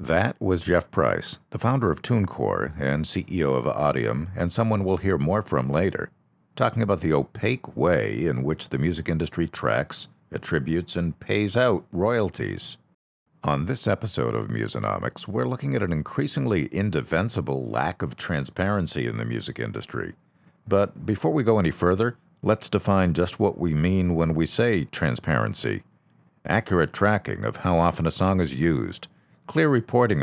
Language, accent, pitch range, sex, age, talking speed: English, American, 80-105 Hz, male, 50-69, 160 wpm